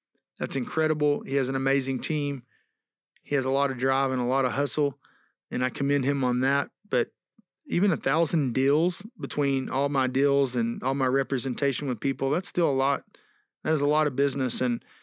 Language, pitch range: English, 135-180 Hz